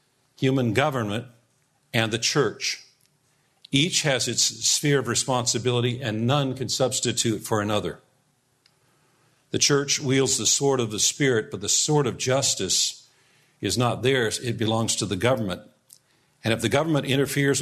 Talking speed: 145 wpm